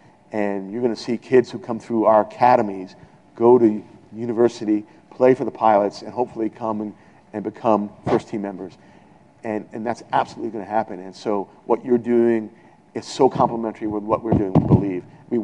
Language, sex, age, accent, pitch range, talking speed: English, male, 50-69, American, 105-135 Hz, 190 wpm